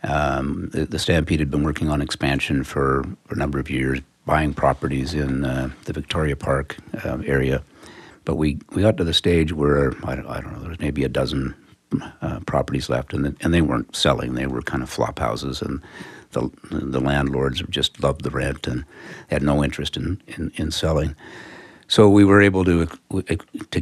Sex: male